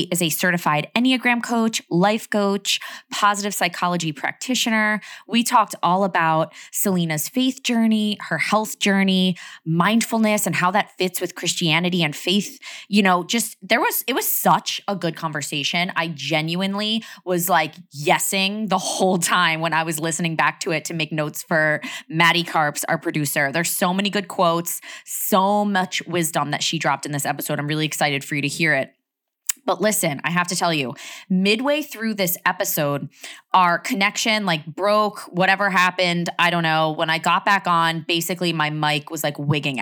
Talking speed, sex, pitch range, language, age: 175 wpm, female, 160-205 Hz, English, 20-39